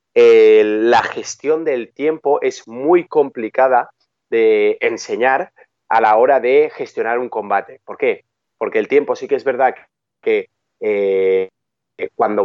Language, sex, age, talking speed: Spanish, male, 30-49, 145 wpm